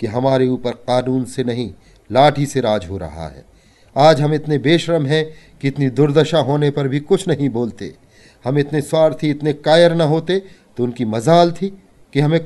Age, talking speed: 40-59, 190 wpm